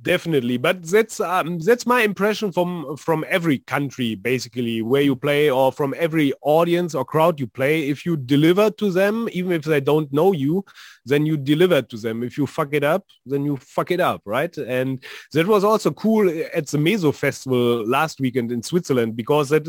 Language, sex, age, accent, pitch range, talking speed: English, male, 30-49, German, 135-175 Hz, 200 wpm